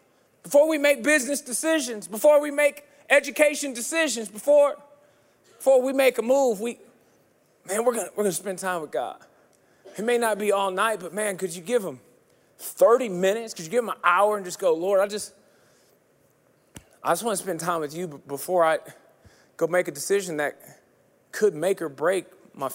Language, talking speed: English, 195 wpm